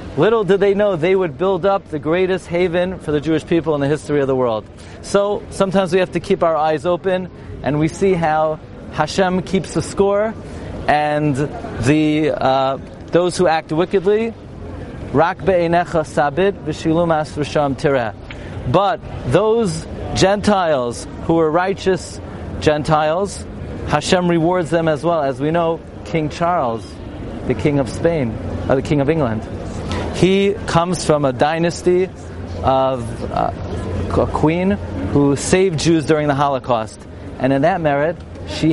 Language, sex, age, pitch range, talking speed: English, male, 40-59, 130-185 Hz, 140 wpm